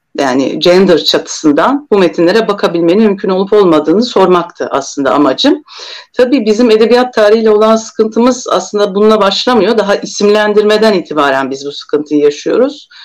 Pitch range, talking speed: 170-230 Hz, 130 wpm